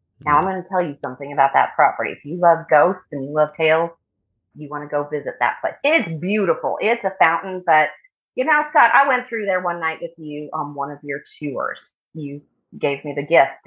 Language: English